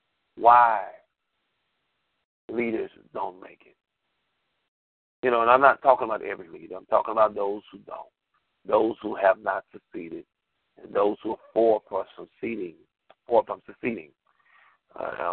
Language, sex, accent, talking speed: English, male, American, 140 wpm